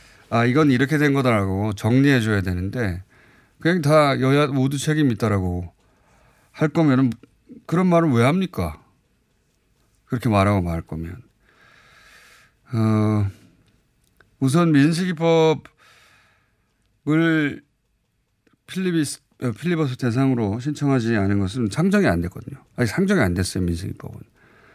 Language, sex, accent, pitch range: Korean, male, native, 105-150 Hz